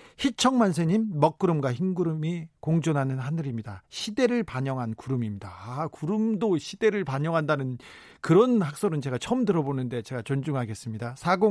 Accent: native